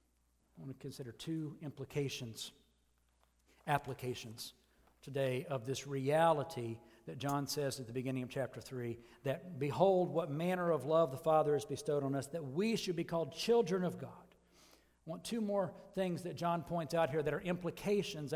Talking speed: 175 wpm